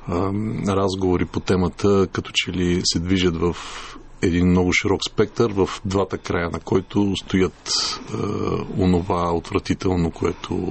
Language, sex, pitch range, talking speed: Bulgarian, male, 90-105 Hz, 125 wpm